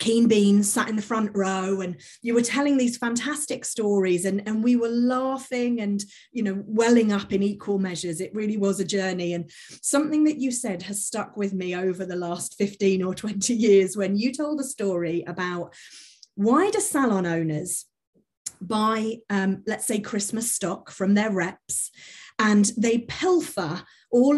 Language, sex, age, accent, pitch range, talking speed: English, female, 30-49, British, 185-235 Hz, 175 wpm